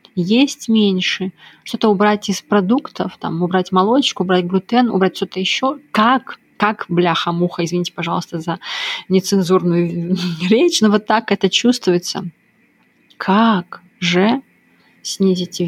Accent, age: native, 20-39